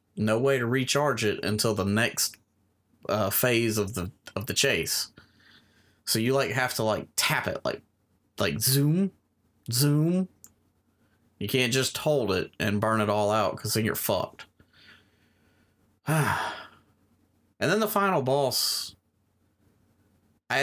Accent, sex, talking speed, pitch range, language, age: American, male, 135 wpm, 100-115 Hz, English, 30-49